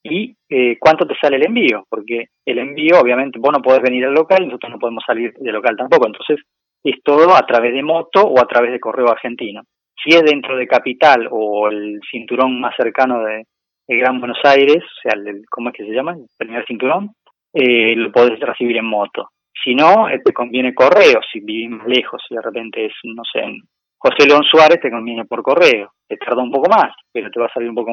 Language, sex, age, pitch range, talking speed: Spanish, male, 20-39, 120-160 Hz, 225 wpm